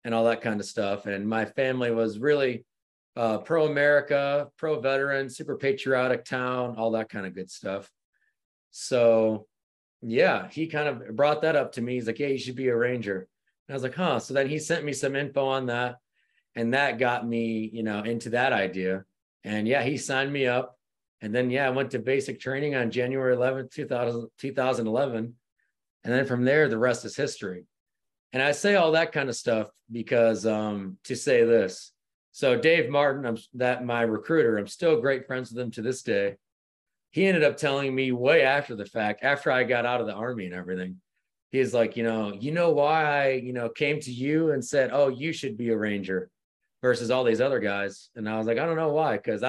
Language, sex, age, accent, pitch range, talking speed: English, male, 30-49, American, 110-140 Hz, 210 wpm